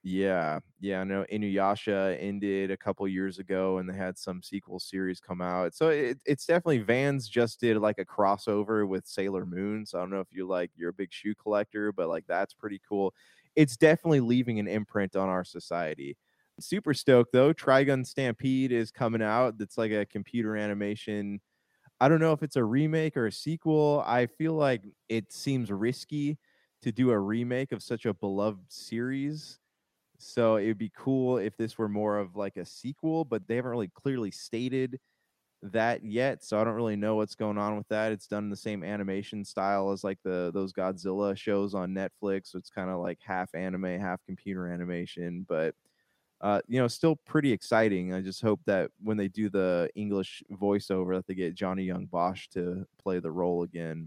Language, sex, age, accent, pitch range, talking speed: English, male, 20-39, American, 95-120 Hz, 195 wpm